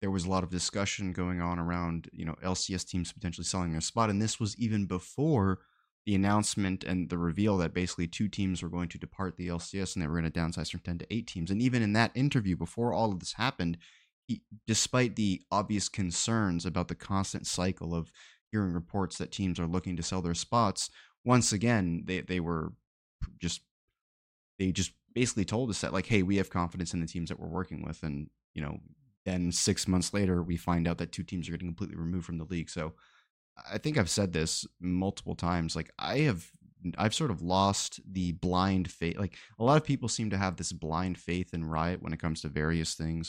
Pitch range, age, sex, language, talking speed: 85-100 Hz, 20-39, male, English, 220 wpm